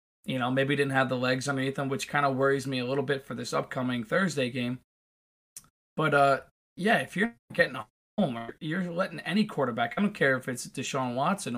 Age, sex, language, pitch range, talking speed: 20-39, male, English, 125-160 Hz, 230 wpm